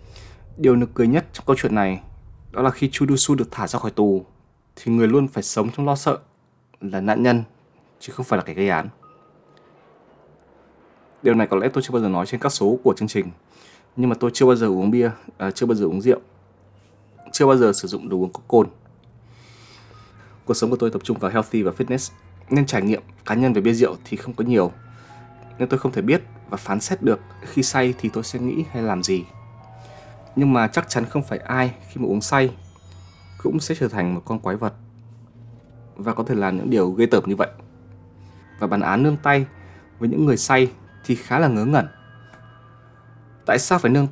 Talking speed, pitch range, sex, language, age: 220 wpm, 100-125 Hz, male, Vietnamese, 20-39